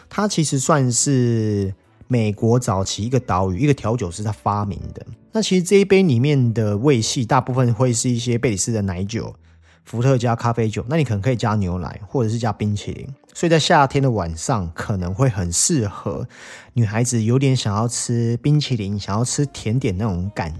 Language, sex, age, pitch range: Chinese, male, 30-49, 100-135 Hz